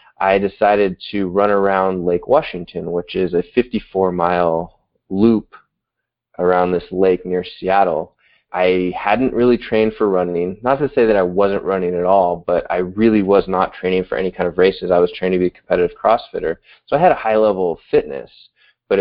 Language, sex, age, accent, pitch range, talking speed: English, male, 20-39, American, 90-110 Hz, 190 wpm